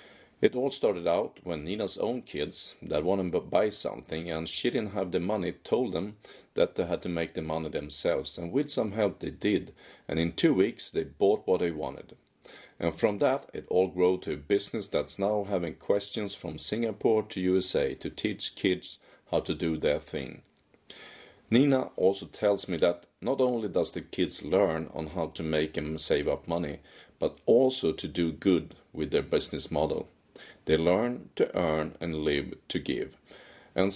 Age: 40-59